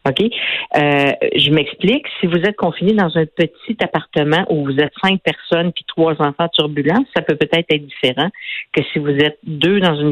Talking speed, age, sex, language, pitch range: 195 wpm, 50-69, female, French, 145-180 Hz